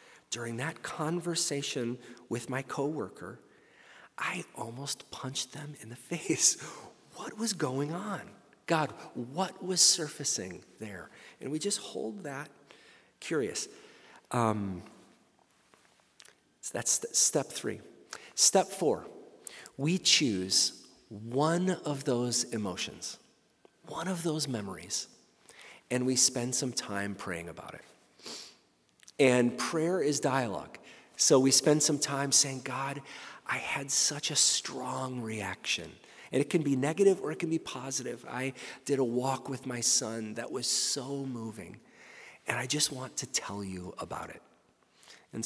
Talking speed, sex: 130 wpm, male